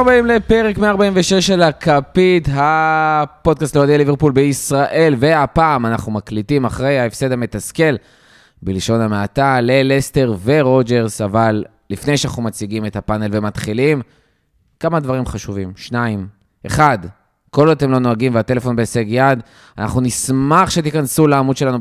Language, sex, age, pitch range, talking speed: Hebrew, male, 20-39, 115-150 Hz, 120 wpm